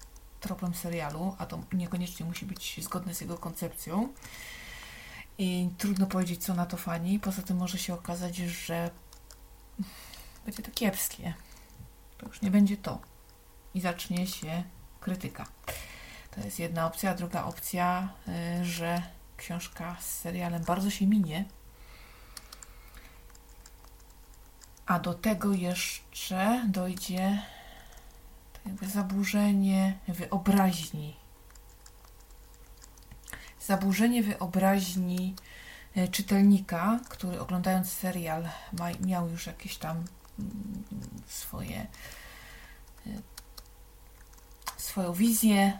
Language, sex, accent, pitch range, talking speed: Polish, female, native, 165-195 Hz, 95 wpm